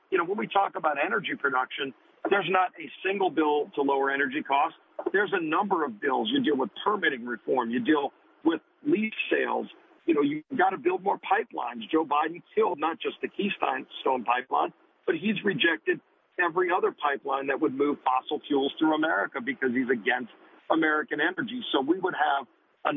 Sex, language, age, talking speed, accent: male, English, 50-69, 185 wpm, American